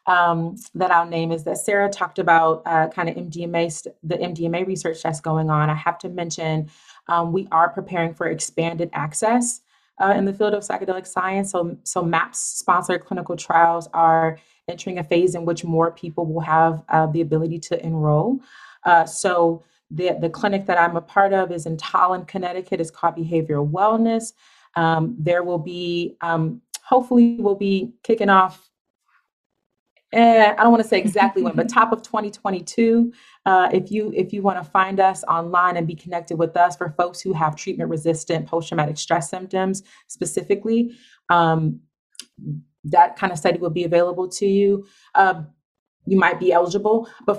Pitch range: 165-200 Hz